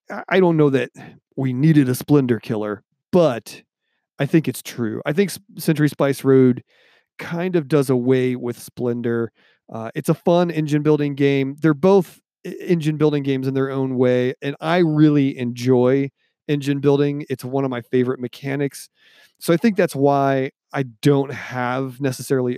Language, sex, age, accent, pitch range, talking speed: English, male, 40-59, American, 125-165 Hz, 165 wpm